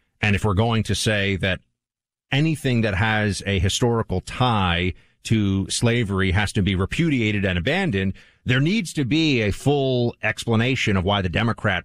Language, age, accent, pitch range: English, 40-59, American, 100-125 Hz